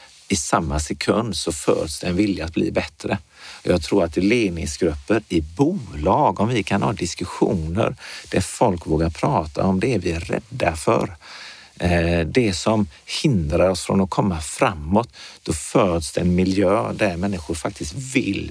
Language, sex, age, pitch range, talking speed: Swedish, male, 50-69, 80-100 Hz, 160 wpm